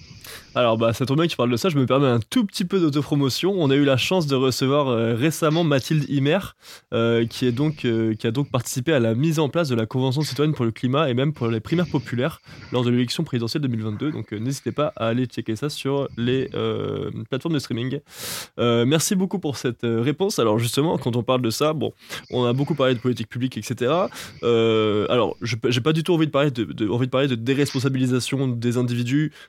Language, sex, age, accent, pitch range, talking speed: French, male, 20-39, French, 120-150 Hz, 240 wpm